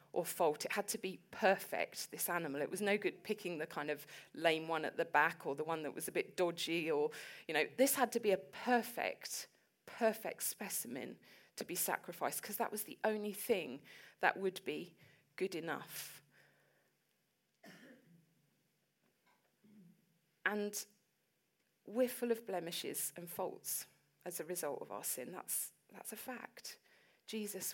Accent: British